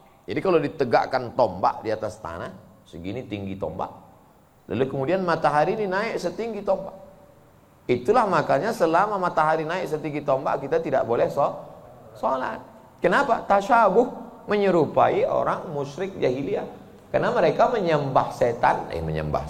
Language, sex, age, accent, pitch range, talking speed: Indonesian, male, 30-49, native, 110-180 Hz, 125 wpm